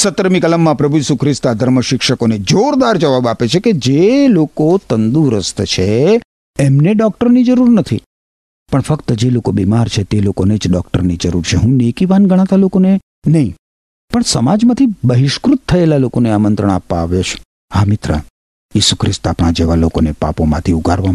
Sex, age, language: male, 50-69, Gujarati